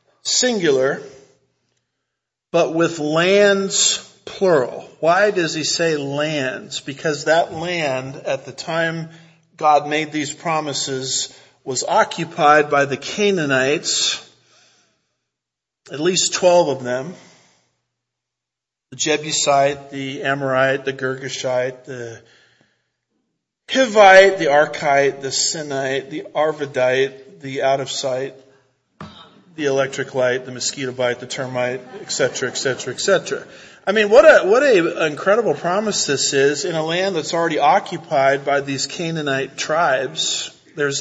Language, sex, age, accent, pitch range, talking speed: English, male, 50-69, American, 135-165 Hz, 115 wpm